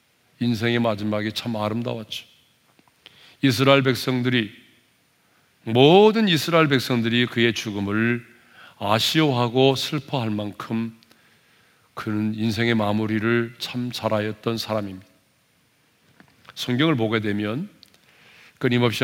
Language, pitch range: Korean, 110-130 Hz